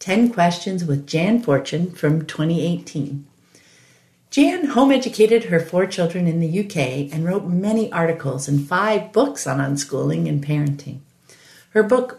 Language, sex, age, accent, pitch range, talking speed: English, female, 50-69, American, 155-225 Hz, 140 wpm